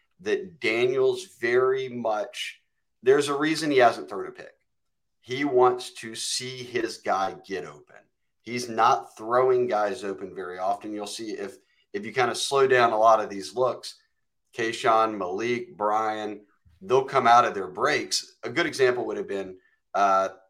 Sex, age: male, 30-49